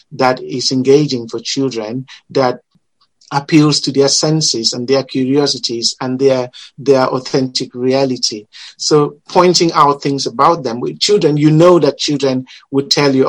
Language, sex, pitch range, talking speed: English, male, 125-145 Hz, 150 wpm